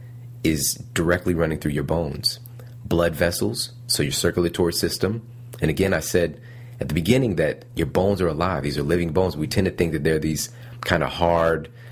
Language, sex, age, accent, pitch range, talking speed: English, male, 30-49, American, 80-120 Hz, 190 wpm